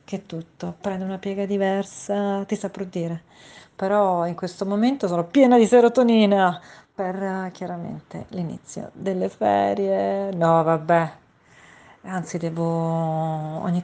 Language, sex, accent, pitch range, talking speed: Italian, female, native, 170-205 Hz, 120 wpm